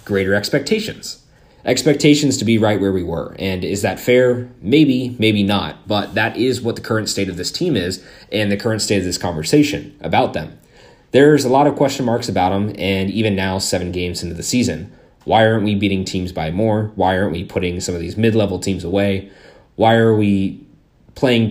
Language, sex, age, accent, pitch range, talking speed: English, male, 20-39, American, 95-115 Hz, 205 wpm